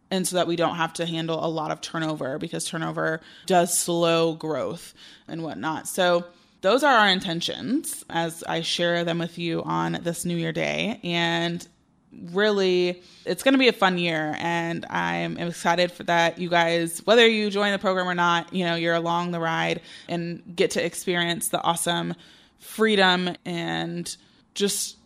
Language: English